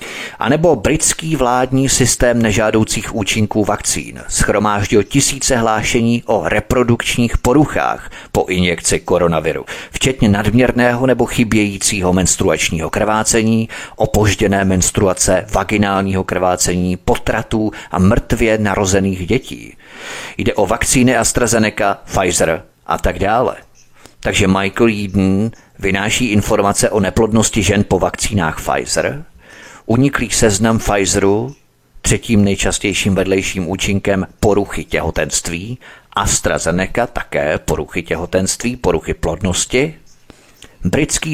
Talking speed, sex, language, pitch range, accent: 100 wpm, male, Czech, 95-120 Hz, native